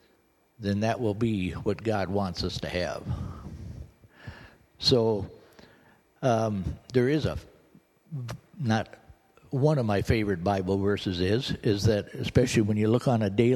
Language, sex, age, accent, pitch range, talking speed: English, male, 60-79, American, 100-120 Hz, 145 wpm